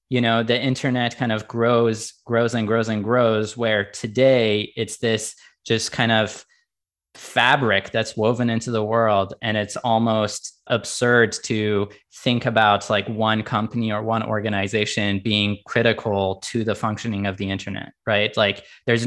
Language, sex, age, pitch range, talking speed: English, male, 20-39, 105-120 Hz, 155 wpm